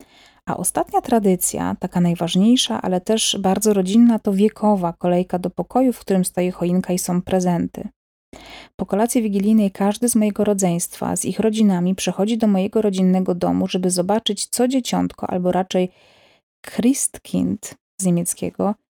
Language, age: Polish, 30-49